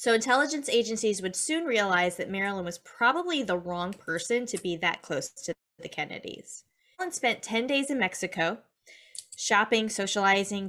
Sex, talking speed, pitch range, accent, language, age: female, 155 wpm, 185-235 Hz, American, English, 20-39